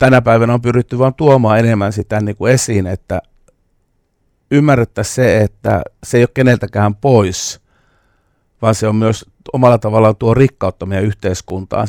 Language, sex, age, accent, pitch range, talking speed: Finnish, male, 50-69, native, 95-115 Hz, 145 wpm